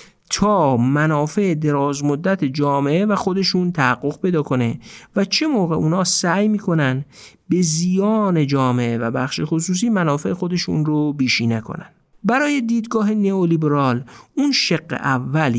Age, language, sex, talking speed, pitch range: 50-69, Persian, male, 125 wpm, 135-185 Hz